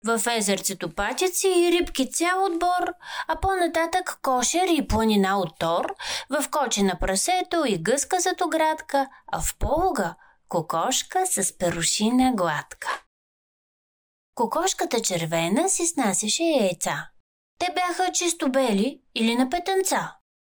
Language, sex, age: Bulgarian, female, 30-49